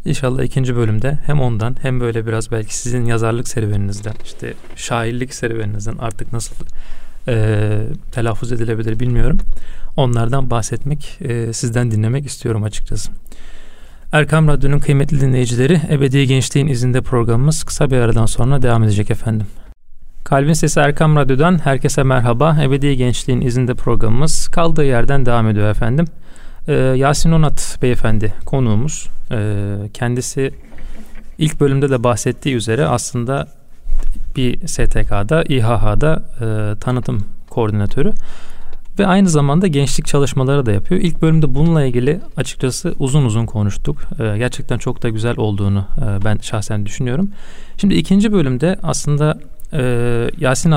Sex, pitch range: male, 115-145 Hz